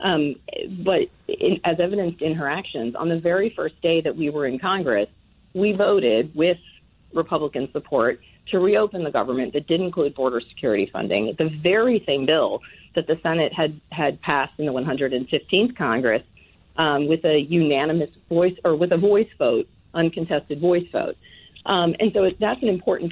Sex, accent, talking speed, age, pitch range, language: female, American, 175 wpm, 40-59, 145-185 Hz, English